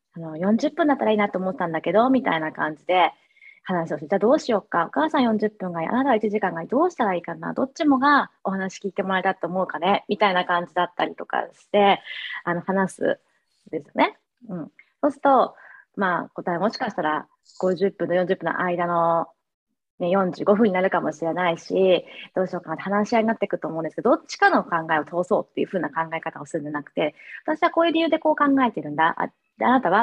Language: Japanese